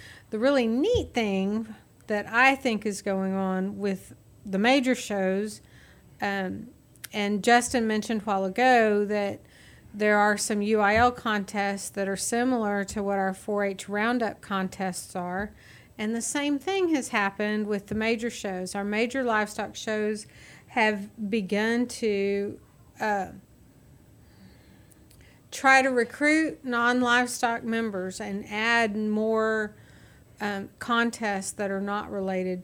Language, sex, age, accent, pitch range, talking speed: English, female, 40-59, American, 195-220 Hz, 125 wpm